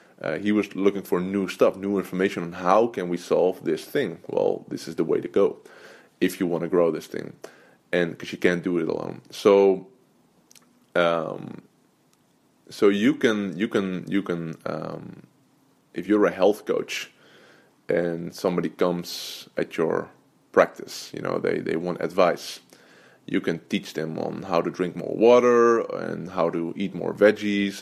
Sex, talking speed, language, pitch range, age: male, 170 wpm, English, 85-105 Hz, 20-39